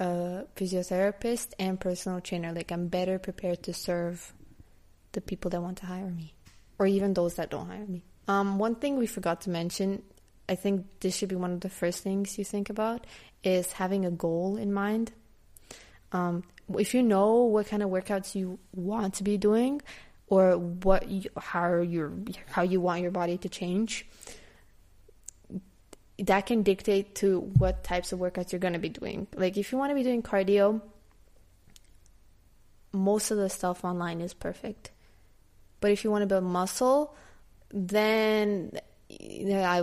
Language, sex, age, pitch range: English, female, 20-39, 180-210 Hz